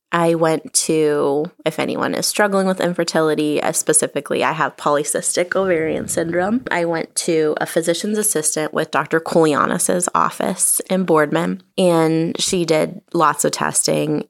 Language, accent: English, American